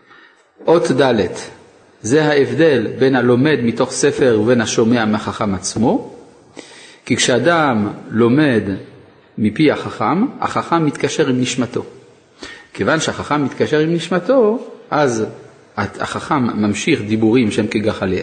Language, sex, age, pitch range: Hebrew, male, 40-59, 110-155 Hz